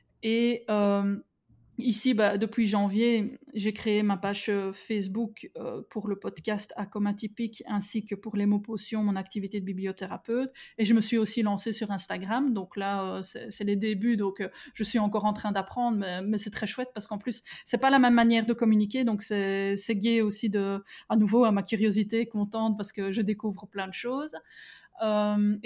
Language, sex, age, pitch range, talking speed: French, female, 20-39, 205-230 Hz, 200 wpm